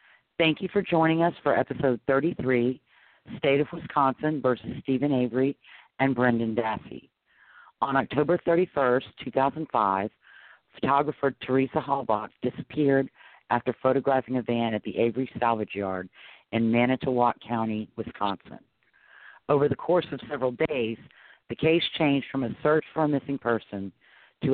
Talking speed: 135 wpm